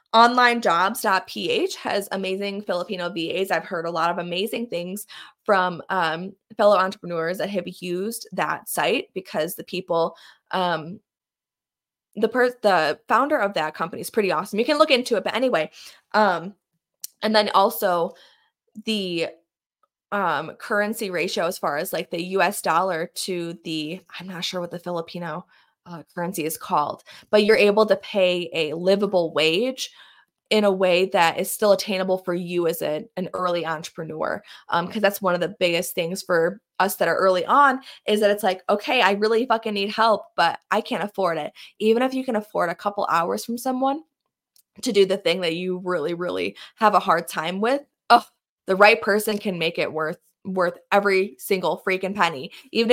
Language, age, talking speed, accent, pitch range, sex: English, 20-39, 175 wpm, American, 175-215 Hz, female